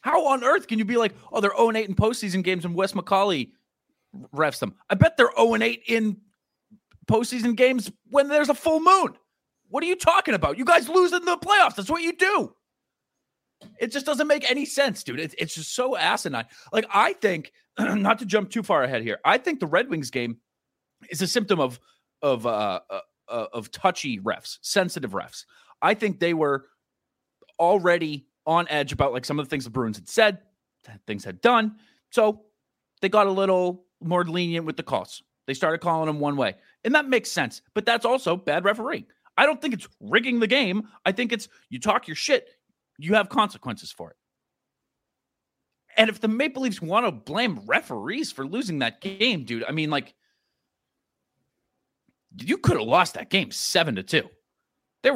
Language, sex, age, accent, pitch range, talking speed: English, male, 30-49, American, 170-250 Hz, 190 wpm